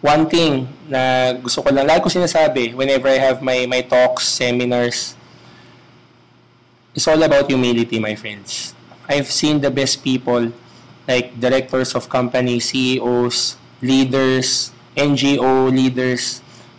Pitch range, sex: 125-150 Hz, male